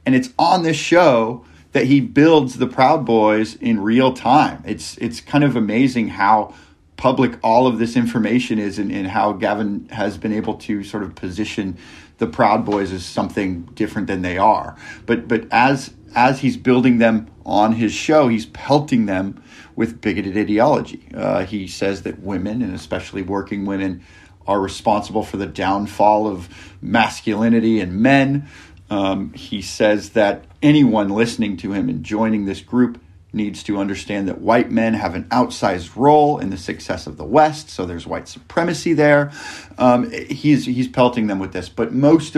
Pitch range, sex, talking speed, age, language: 95-125 Hz, male, 175 wpm, 40-59, English